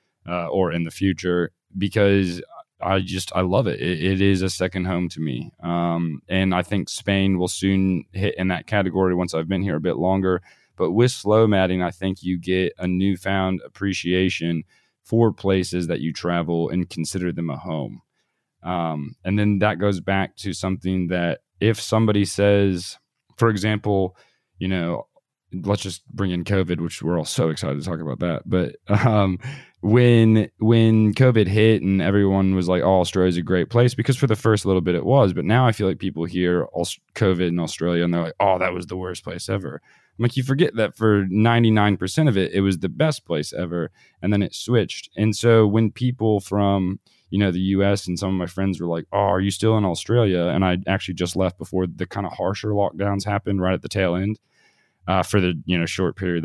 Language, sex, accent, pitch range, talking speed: English, male, American, 90-105 Hz, 210 wpm